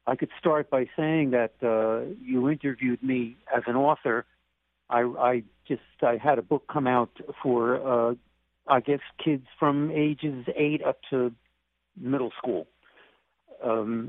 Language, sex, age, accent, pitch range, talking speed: English, male, 60-79, American, 115-150 Hz, 150 wpm